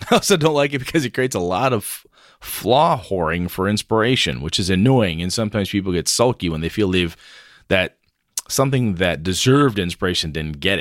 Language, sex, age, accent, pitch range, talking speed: English, male, 30-49, American, 90-120 Hz, 190 wpm